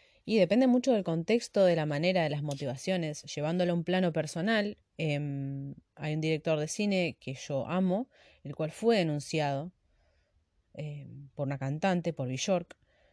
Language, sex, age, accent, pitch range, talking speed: Spanish, female, 20-39, Argentinian, 140-180 Hz, 160 wpm